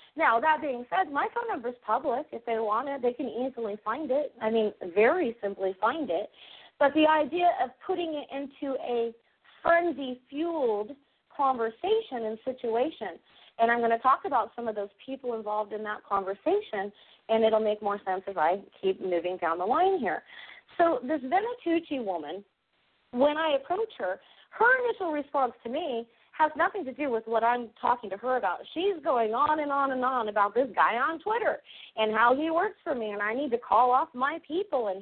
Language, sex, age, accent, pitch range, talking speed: English, female, 40-59, American, 220-310 Hz, 195 wpm